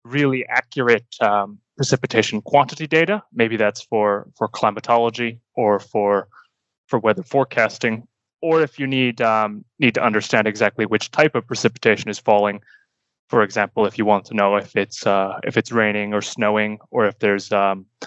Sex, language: male, English